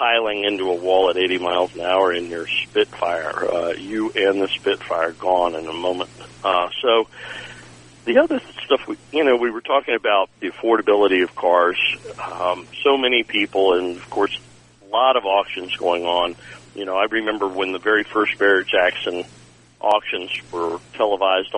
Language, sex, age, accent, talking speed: English, male, 50-69, American, 170 wpm